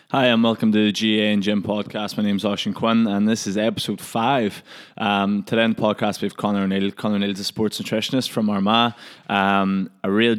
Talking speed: 225 wpm